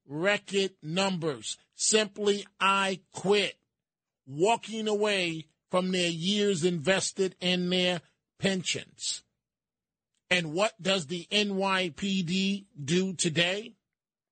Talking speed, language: 90 wpm, English